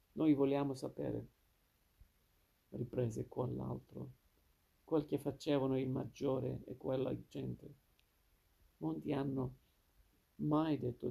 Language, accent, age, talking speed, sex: Italian, native, 50-69, 95 wpm, male